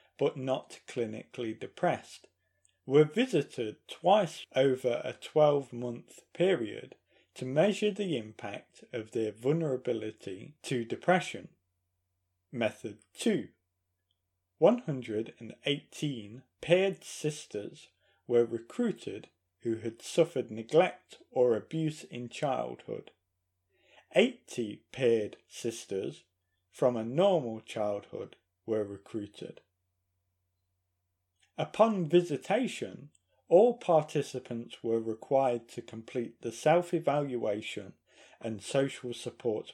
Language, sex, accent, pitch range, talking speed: English, male, British, 95-140 Hz, 85 wpm